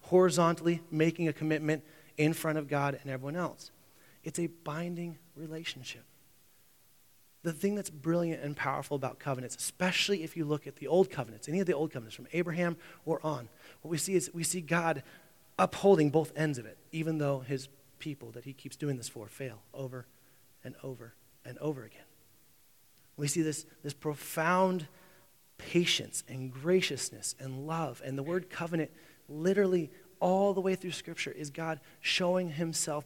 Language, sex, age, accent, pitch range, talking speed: English, male, 30-49, American, 150-190 Hz, 170 wpm